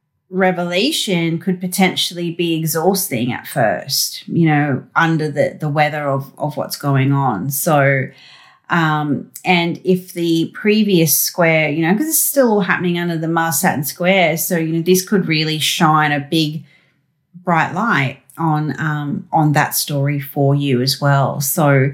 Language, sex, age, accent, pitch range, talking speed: English, female, 30-49, Australian, 145-175 Hz, 155 wpm